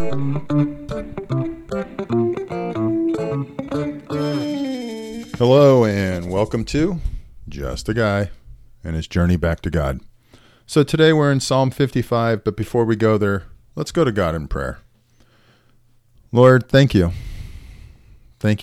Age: 40-59